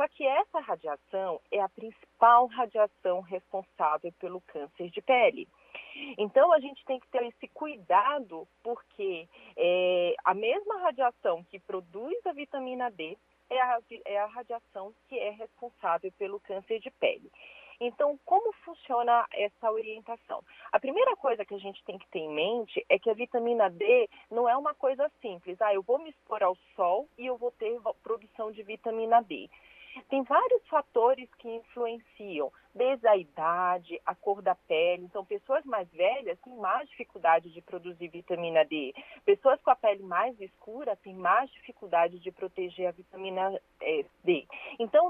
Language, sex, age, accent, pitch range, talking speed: Portuguese, female, 40-59, Brazilian, 200-285 Hz, 160 wpm